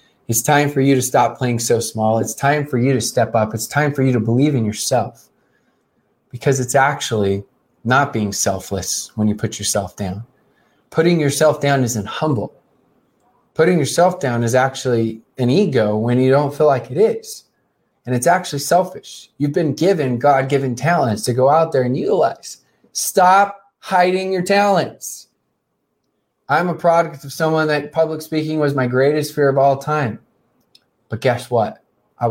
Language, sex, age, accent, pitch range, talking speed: English, male, 20-39, American, 115-150 Hz, 170 wpm